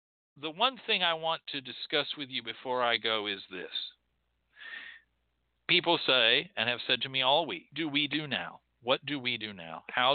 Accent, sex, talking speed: American, male, 195 wpm